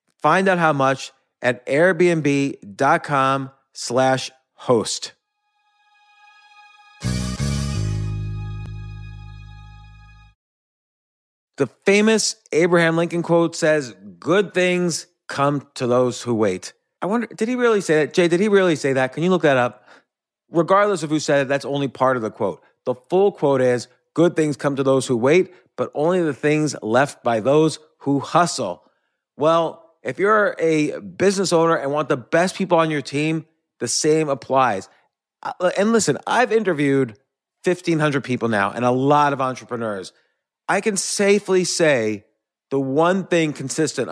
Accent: American